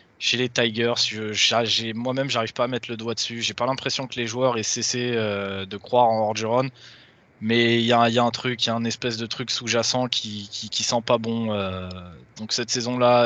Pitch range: 110-125 Hz